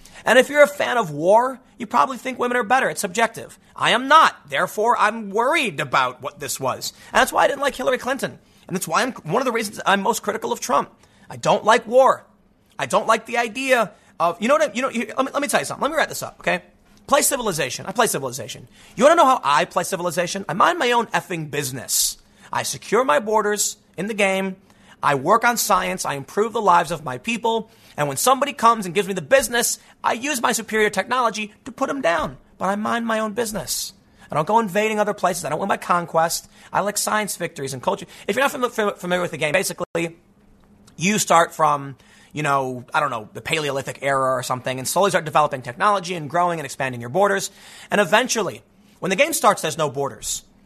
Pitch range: 170-235 Hz